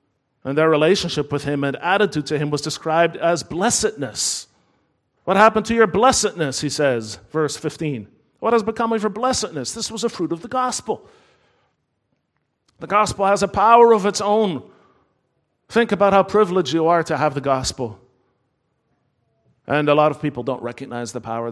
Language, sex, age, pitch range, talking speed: English, male, 40-59, 120-170 Hz, 175 wpm